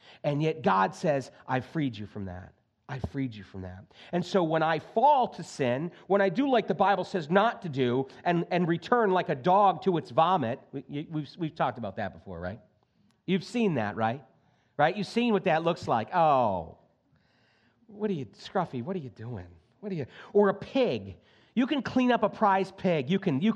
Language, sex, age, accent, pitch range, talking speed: English, male, 40-59, American, 135-205 Hz, 215 wpm